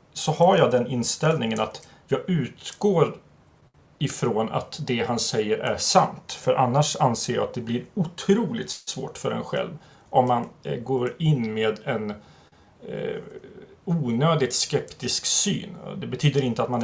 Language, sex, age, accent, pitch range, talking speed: Swedish, male, 30-49, native, 120-160 Hz, 145 wpm